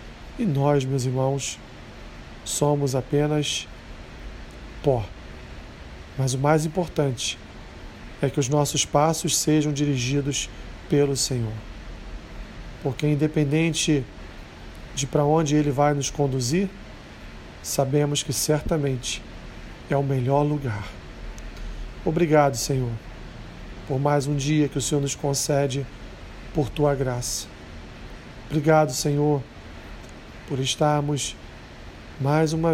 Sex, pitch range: male, 115-150 Hz